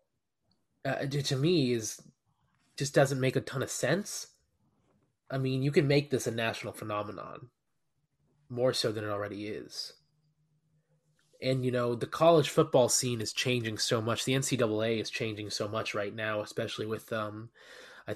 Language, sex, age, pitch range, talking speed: English, male, 20-39, 110-135 Hz, 160 wpm